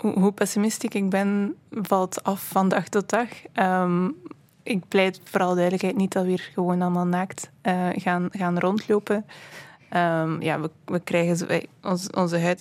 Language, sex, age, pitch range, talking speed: Dutch, female, 20-39, 165-185 Hz, 165 wpm